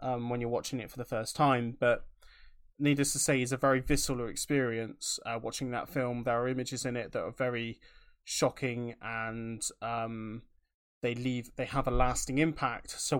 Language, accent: English, British